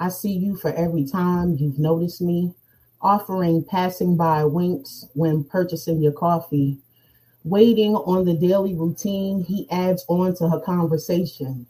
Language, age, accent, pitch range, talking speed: English, 30-49, American, 155-185 Hz, 145 wpm